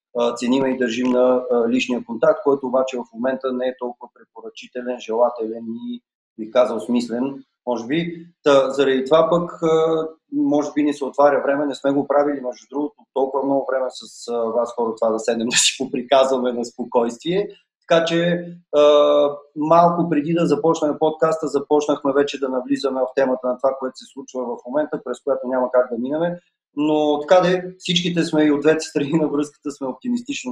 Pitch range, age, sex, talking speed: 125-155 Hz, 30-49, male, 180 wpm